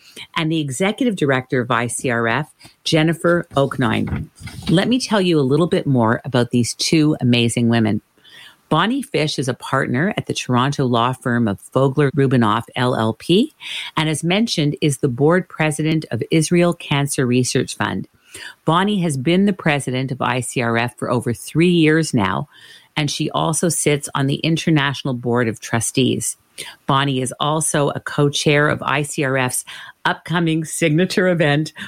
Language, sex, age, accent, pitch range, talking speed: English, female, 50-69, American, 130-165 Hz, 150 wpm